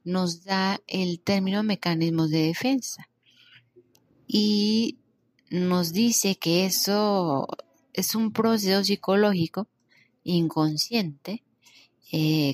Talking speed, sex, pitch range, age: 85 wpm, female, 160-210 Hz, 20-39